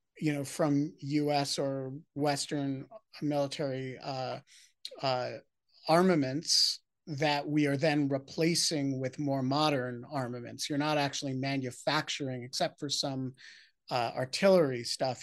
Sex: male